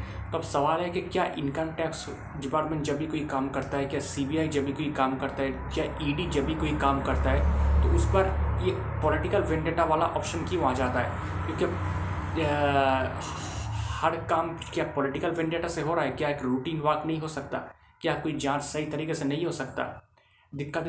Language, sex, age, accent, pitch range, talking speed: Hindi, male, 20-39, native, 135-160 Hz, 200 wpm